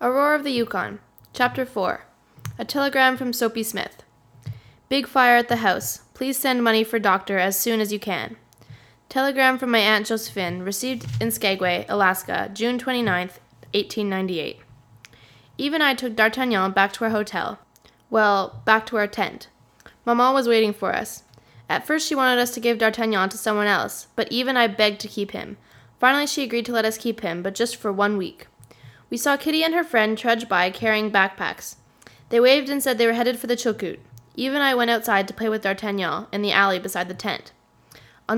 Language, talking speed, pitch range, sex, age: English, 190 wpm, 190-240 Hz, female, 20-39